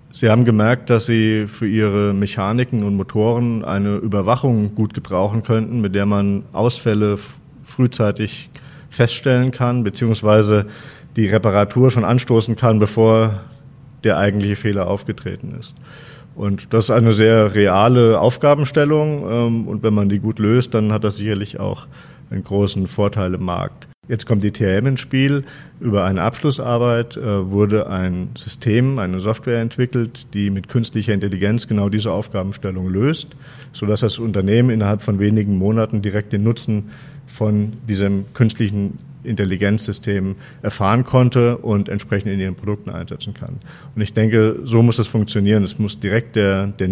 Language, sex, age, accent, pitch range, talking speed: German, male, 30-49, German, 100-120 Hz, 150 wpm